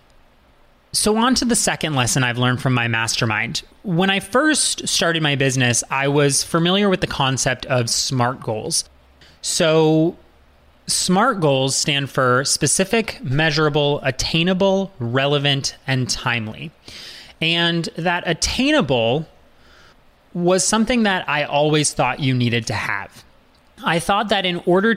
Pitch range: 125-175 Hz